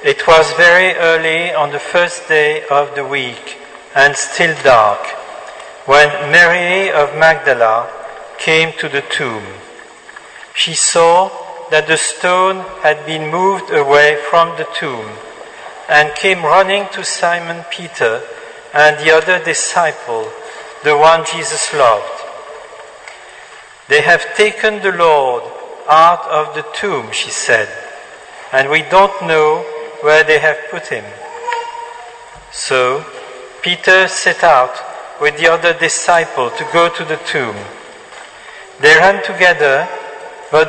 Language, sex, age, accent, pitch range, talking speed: English, male, 50-69, French, 150-190 Hz, 125 wpm